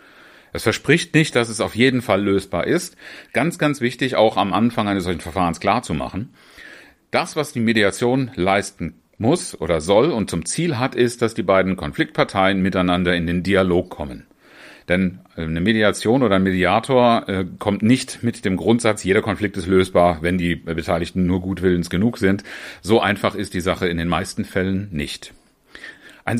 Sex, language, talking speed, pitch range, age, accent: male, German, 170 wpm, 90-115 Hz, 40-59, German